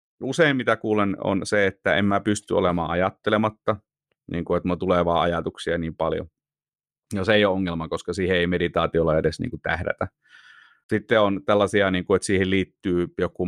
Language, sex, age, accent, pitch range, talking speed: Finnish, male, 30-49, native, 90-110 Hz, 185 wpm